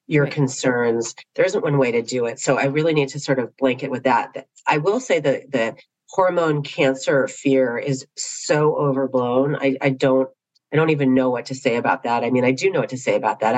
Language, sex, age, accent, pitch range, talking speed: English, female, 40-59, American, 130-145 Hz, 230 wpm